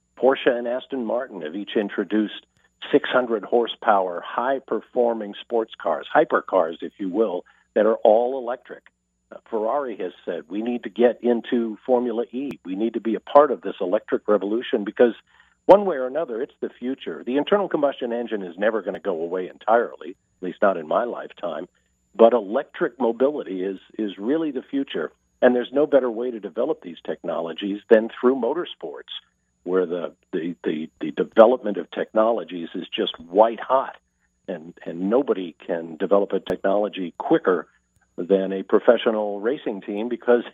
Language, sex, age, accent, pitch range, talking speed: English, male, 50-69, American, 95-125 Hz, 165 wpm